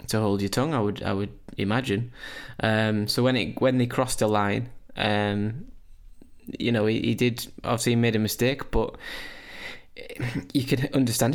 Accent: British